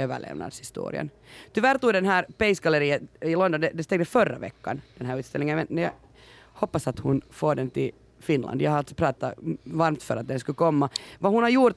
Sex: female